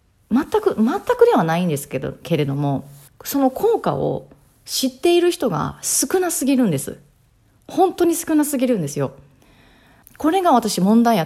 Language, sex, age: Japanese, female, 30-49